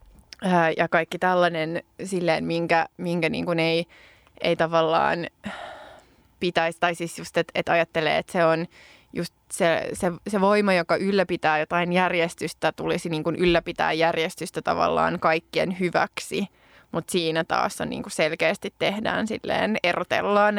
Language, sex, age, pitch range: Finnish, female, 20-39, 165-195 Hz